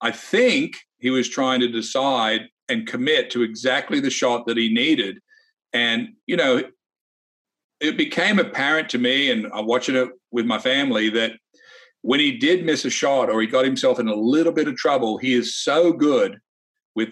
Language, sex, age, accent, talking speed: English, male, 50-69, American, 185 wpm